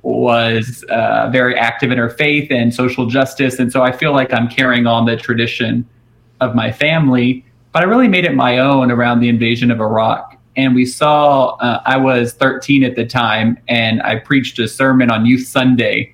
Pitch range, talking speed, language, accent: 120-130 Hz, 195 wpm, English, American